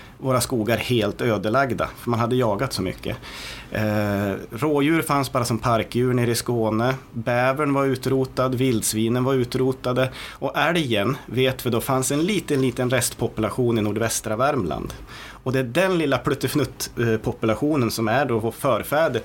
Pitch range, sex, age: 110-135 Hz, male, 30-49